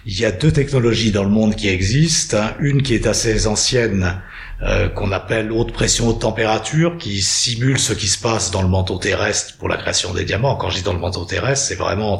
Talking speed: 225 wpm